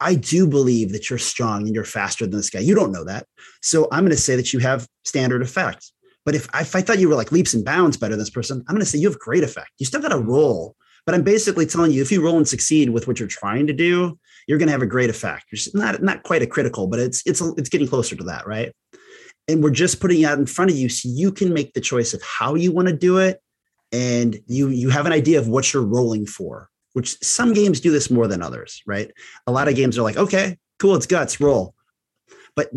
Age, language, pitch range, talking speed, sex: 30-49, English, 125-170 Hz, 275 wpm, male